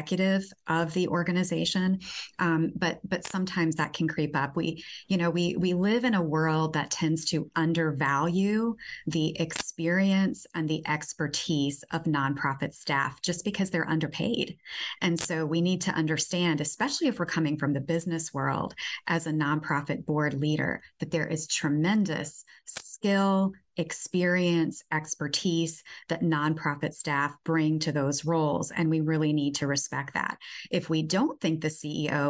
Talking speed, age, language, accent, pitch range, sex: 150 wpm, 30-49, English, American, 150-175 Hz, female